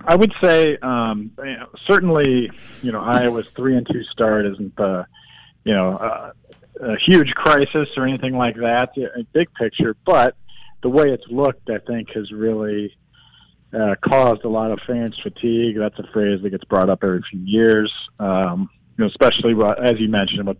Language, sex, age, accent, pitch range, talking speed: English, male, 40-59, American, 100-120 Hz, 175 wpm